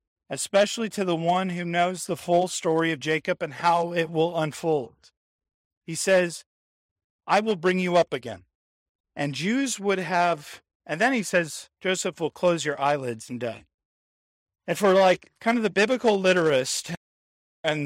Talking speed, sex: 160 wpm, male